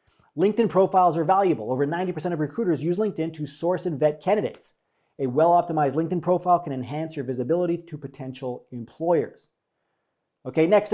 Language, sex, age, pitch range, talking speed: English, male, 40-59, 155-195 Hz, 155 wpm